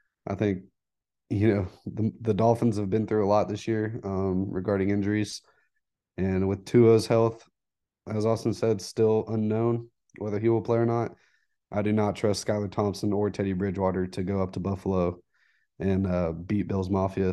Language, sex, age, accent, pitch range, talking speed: English, male, 20-39, American, 95-110 Hz, 175 wpm